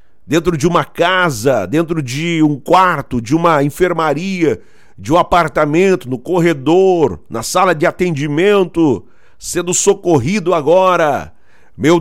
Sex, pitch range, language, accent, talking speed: male, 115-190 Hz, Portuguese, Brazilian, 120 wpm